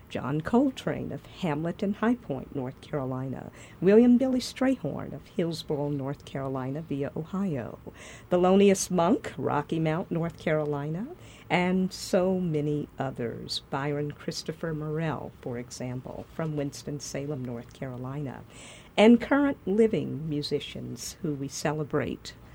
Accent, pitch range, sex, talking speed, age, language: American, 135-200 Hz, female, 120 wpm, 50-69, English